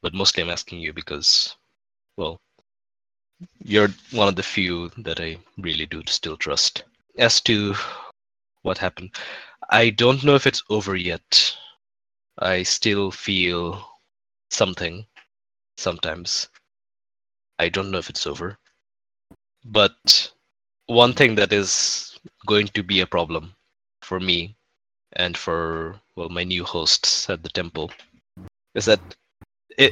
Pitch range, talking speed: 90-115 Hz, 130 wpm